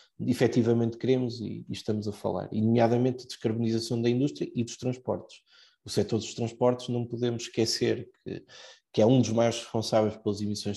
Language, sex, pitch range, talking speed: Portuguese, male, 110-130 Hz, 175 wpm